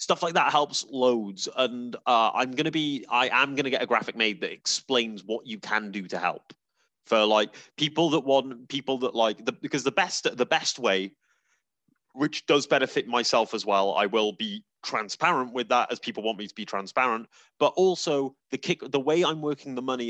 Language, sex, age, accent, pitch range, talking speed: English, male, 30-49, British, 110-145 Hz, 210 wpm